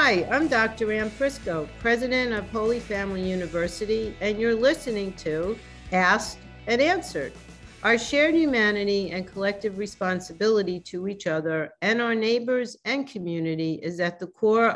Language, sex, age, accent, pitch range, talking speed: English, female, 50-69, American, 165-215 Hz, 140 wpm